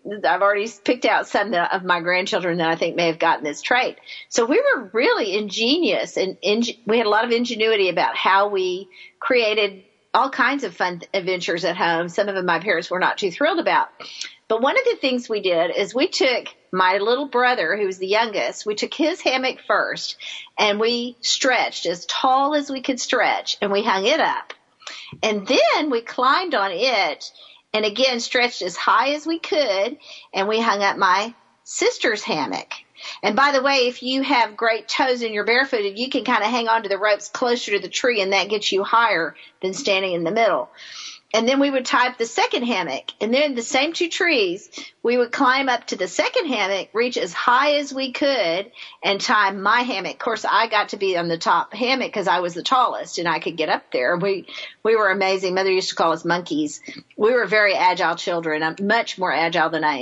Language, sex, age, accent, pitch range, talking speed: English, female, 50-69, American, 195-270 Hz, 215 wpm